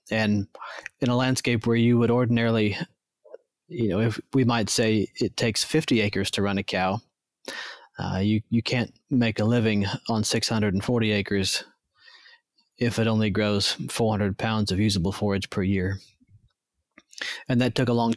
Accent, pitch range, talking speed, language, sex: American, 110-125 Hz, 160 wpm, English, male